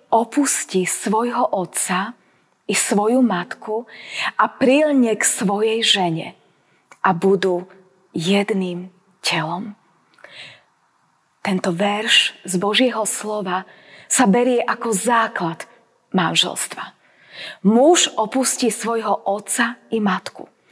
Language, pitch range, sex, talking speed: Slovak, 190-250 Hz, female, 90 wpm